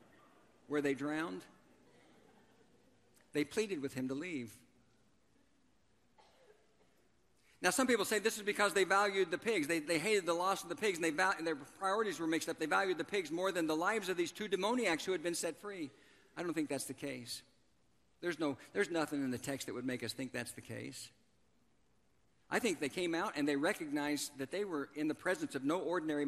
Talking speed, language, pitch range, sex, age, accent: 210 wpm, English, 165-240 Hz, male, 50-69, American